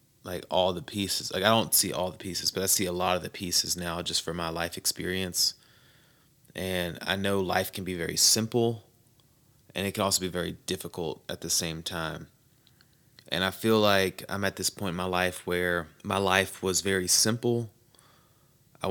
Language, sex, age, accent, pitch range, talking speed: English, male, 30-49, American, 90-105 Hz, 195 wpm